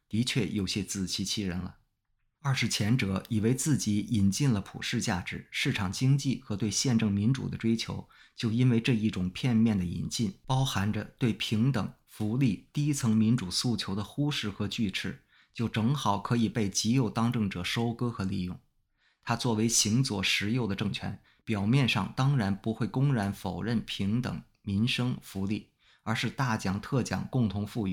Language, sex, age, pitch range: English, male, 20-39, 100-120 Hz